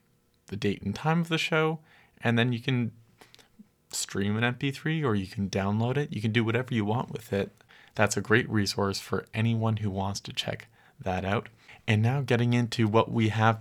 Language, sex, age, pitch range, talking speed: English, male, 20-39, 105-120 Hz, 205 wpm